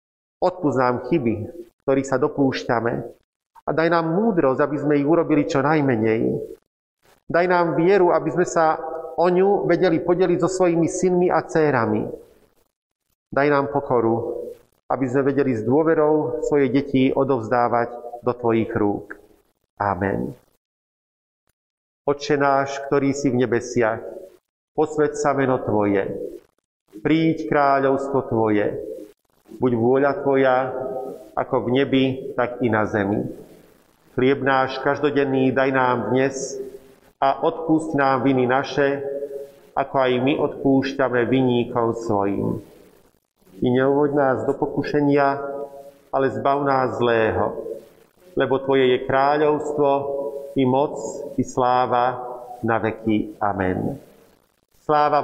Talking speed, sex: 115 wpm, male